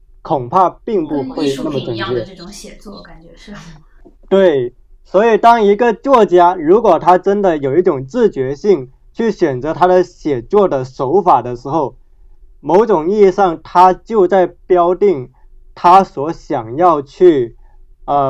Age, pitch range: 20-39, 135-185 Hz